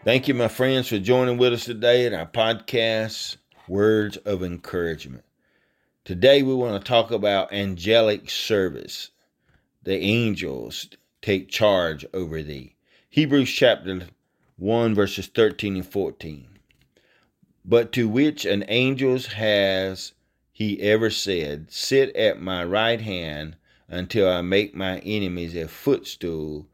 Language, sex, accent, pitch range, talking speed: English, male, American, 90-110 Hz, 130 wpm